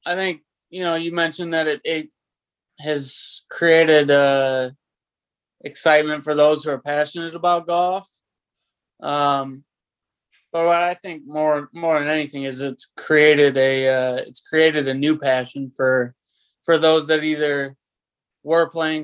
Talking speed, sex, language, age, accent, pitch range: 150 wpm, male, English, 20-39, American, 135-155 Hz